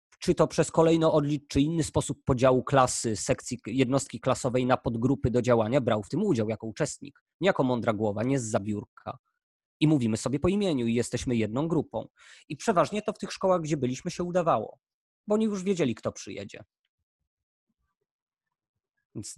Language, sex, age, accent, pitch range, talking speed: Polish, male, 20-39, native, 120-155 Hz, 175 wpm